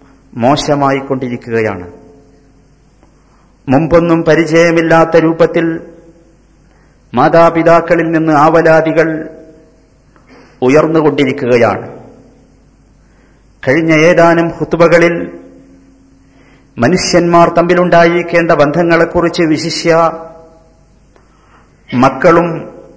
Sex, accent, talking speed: male, native, 40 wpm